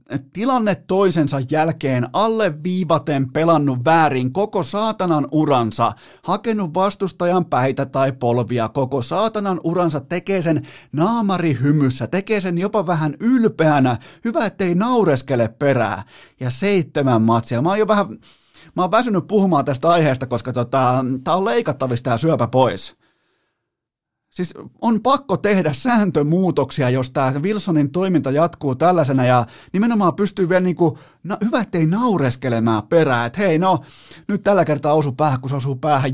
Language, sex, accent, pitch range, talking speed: Finnish, male, native, 125-180 Hz, 140 wpm